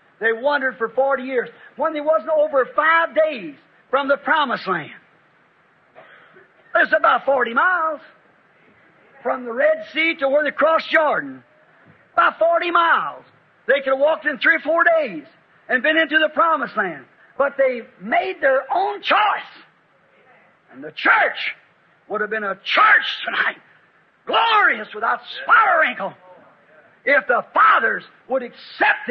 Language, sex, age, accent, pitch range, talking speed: English, male, 50-69, American, 235-315 Hz, 145 wpm